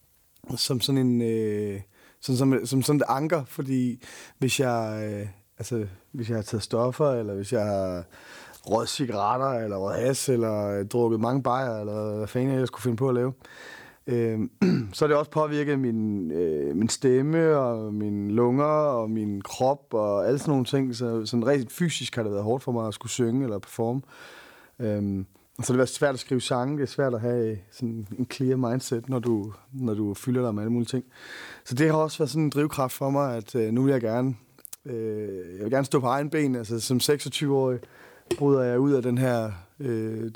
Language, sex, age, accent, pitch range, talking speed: Danish, male, 30-49, native, 105-130 Hz, 210 wpm